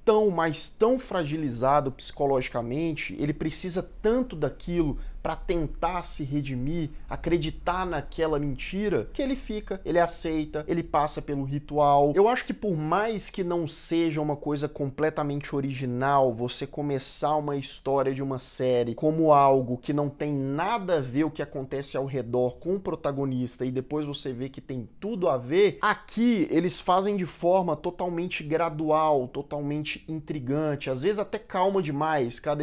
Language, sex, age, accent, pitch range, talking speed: Portuguese, male, 20-39, Brazilian, 140-175 Hz, 155 wpm